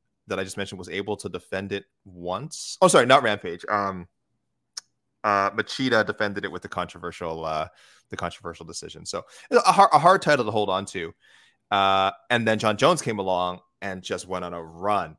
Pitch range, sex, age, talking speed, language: 90-110 Hz, male, 20-39, 195 wpm, English